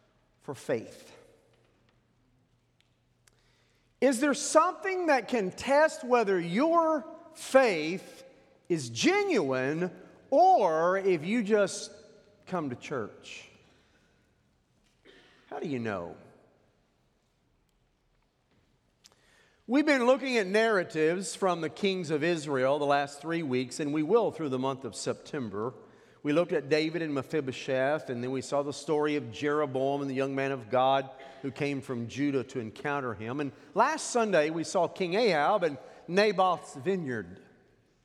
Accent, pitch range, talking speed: American, 145-235 Hz, 130 wpm